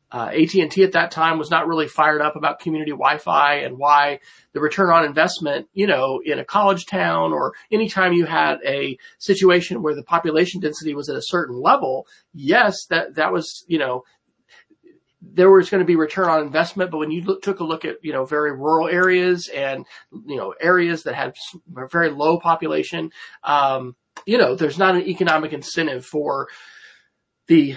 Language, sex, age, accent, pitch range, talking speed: English, male, 40-59, American, 155-190 Hz, 190 wpm